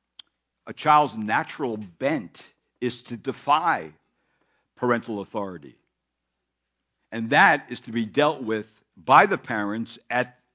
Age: 60-79